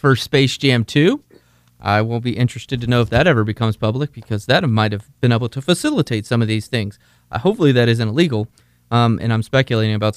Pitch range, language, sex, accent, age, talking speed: 115-150 Hz, English, male, American, 30-49, 220 wpm